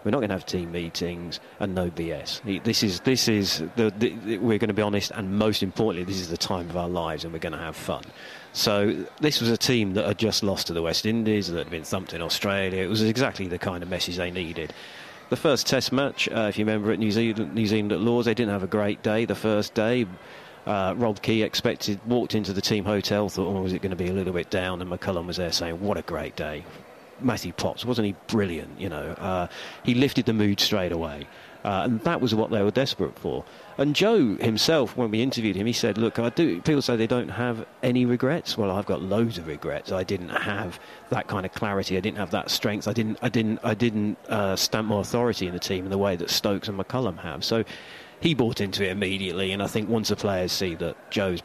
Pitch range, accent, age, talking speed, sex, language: 95-115 Hz, British, 40-59, 250 wpm, male, English